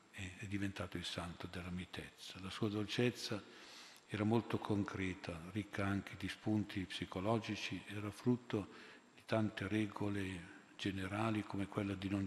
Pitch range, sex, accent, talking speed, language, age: 95-110 Hz, male, native, 130 wpm, Italian, 50-69